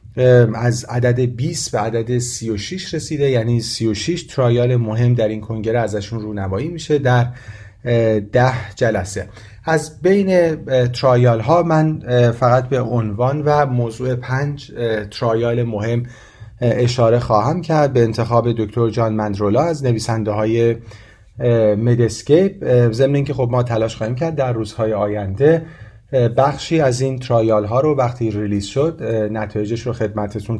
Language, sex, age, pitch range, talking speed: Persian, male, 40-59, 110-135 Hz, 135 wpm